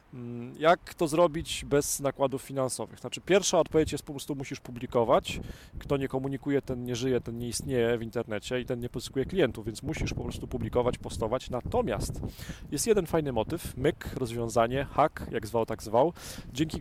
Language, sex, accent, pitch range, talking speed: Polish, male, native, 120-155 Hz, 170 wpm